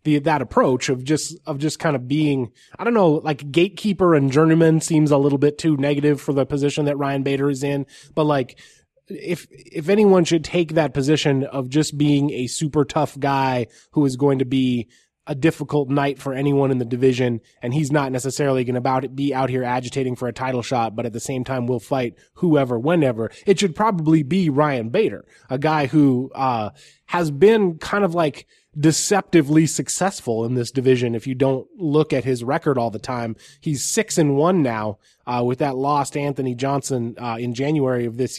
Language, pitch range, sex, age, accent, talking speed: English, 130-155 Hz, male, 20-39, American, 200 wpm